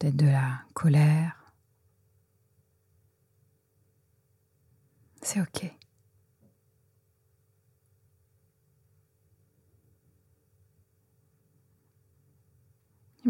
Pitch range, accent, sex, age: 110-165 Hz, French, female, 30-49